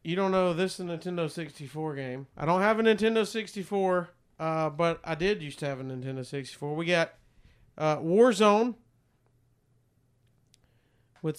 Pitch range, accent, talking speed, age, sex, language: 145-220 Hz, American, 160 wpm, 40-59, male, English